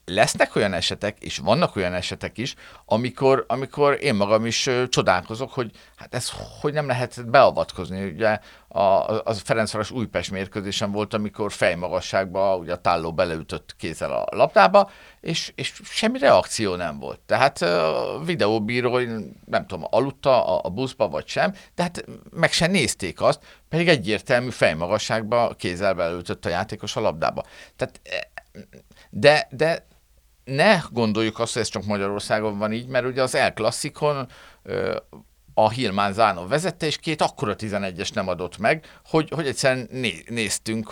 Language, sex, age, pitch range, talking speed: Hungarian, male, 50-69, 100-135 Hz, 145 wpm